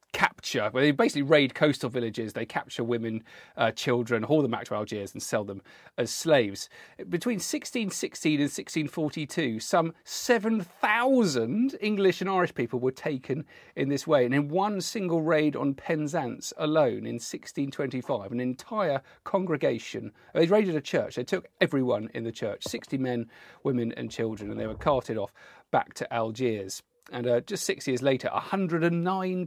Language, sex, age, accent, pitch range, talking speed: English, male, 40-59, British, 120-175 Hz, 165 wpm